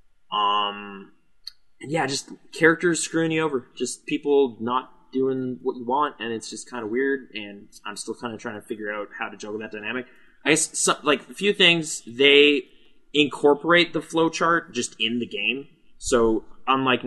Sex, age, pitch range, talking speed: male, 20-39, 105-135 Hz, 175 wpm